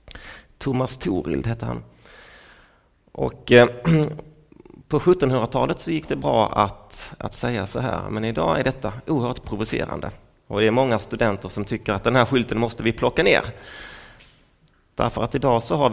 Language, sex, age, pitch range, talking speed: Swedish, male, 30-49, 105-130 Hz, 160 wpm